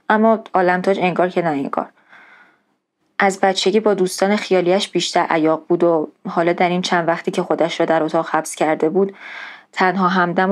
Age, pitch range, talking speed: 20-39, 170-195 Hz, 170 wpm